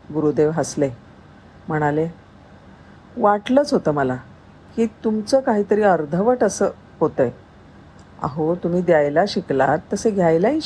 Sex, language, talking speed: female, Marathi, 100 wpm